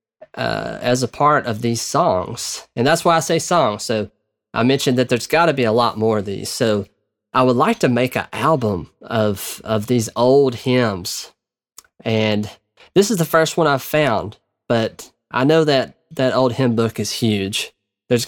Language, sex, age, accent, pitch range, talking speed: English, male, 20-39, American, 110-140 Hz, 190 wpm